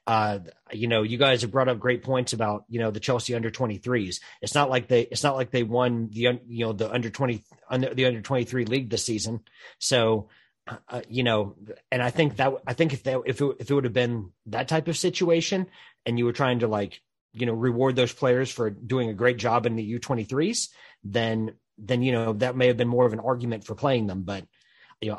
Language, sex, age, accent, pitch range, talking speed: English, male, 30-49, American, 115-130 Hz, 240 wpm